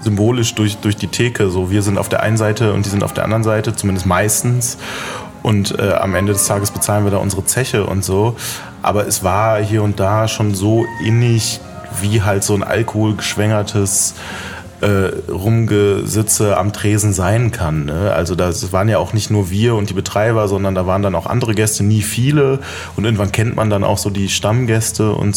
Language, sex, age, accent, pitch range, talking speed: German, male, 30-49, German, 100-110 Hz, 200 wpm